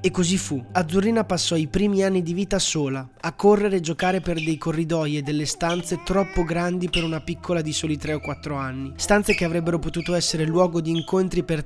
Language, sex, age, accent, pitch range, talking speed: Italian, male, 20-39, native, 145-180 Hz, 210 wpm